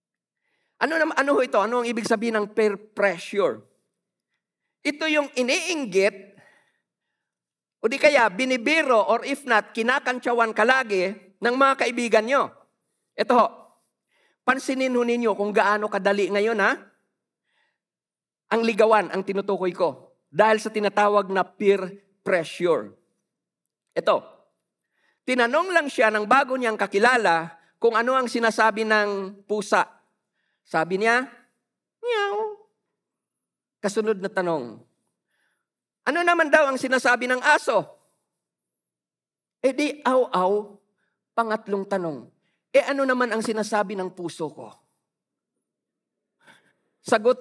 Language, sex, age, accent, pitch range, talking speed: Filipino, male, 50-69, native, 205-275 Hz, 115 wpm